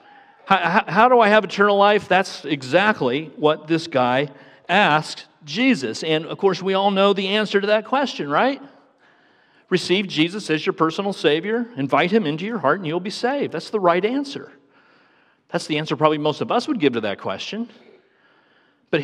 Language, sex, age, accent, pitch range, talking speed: English, male, 50-69, American, 140-210 Hz, 185 wpm